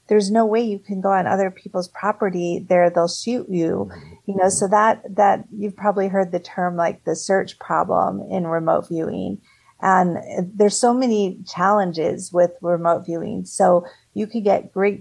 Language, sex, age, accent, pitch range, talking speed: English, female, 50-69, American, 165-190 Hz, 175 wpm